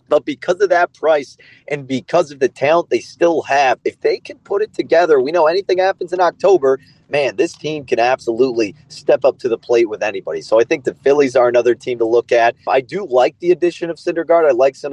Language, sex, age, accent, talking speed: English, male, 30-49, American, 235 wpm